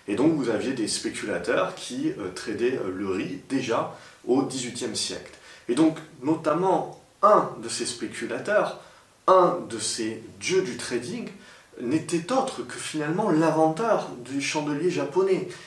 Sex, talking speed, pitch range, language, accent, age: male, 140 wpm, 125-185 Hz, French, French, 30-49